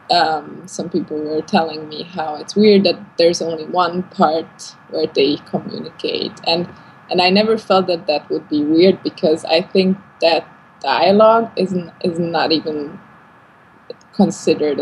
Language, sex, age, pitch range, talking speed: English, female, 20-39, 160-190 Hz, 150 wpm